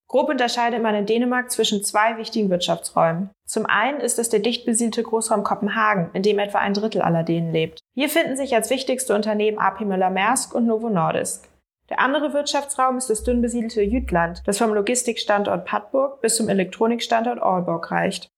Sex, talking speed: female, 180 wpm